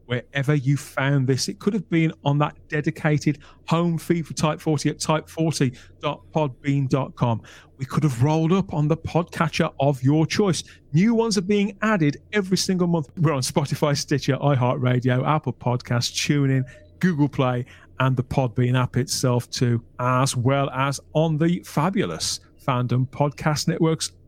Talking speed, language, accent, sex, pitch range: 155 wpm, English, British, male, 125-160 Hz